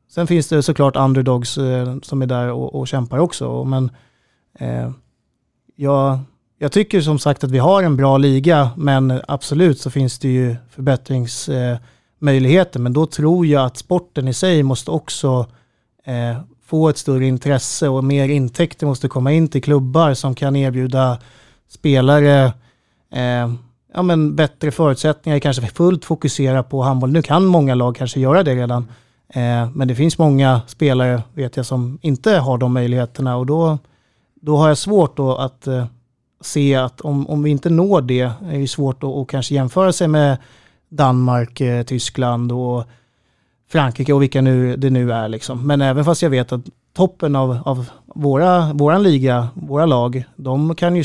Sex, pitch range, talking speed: male, 125-150 Hz, 170 wpm